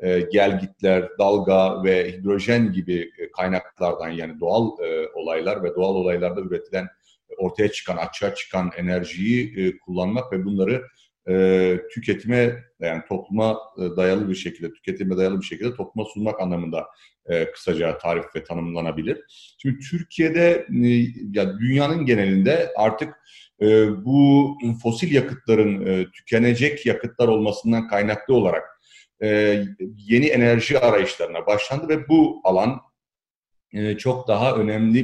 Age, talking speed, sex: 40-59, 105 wpm, male